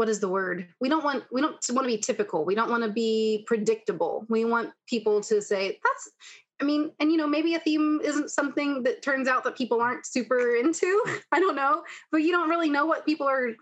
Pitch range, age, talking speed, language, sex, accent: 195-255 Hz, 20-39, 240 wpm, English, female, American